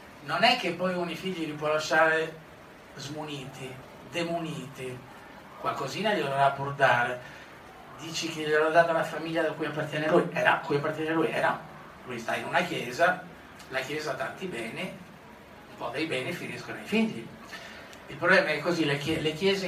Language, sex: Italian, male